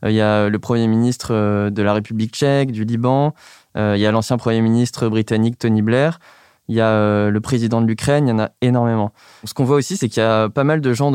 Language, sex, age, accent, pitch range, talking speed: French, male, 20-39, French, 110-130 Hz, 240 wpm